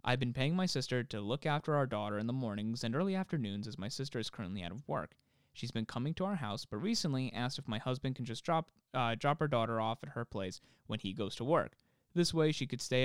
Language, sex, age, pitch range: English, male, 20-39, 110-150 Hz